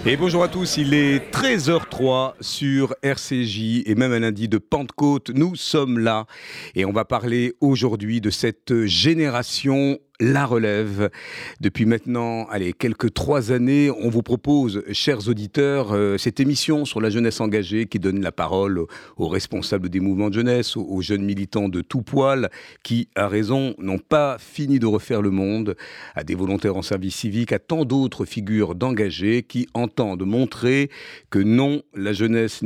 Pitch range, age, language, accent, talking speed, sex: 105-135 Hz, 50-69, French, French, 165 wpm, male